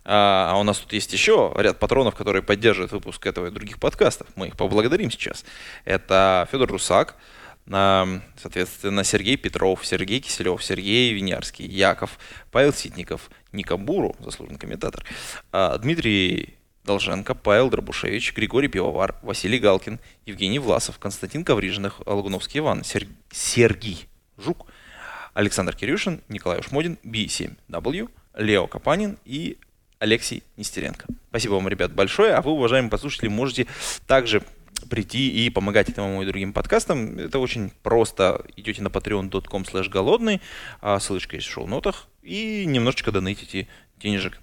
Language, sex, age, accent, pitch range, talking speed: Russian, male, 20-39, native, 95-120 Hz, 125 wpm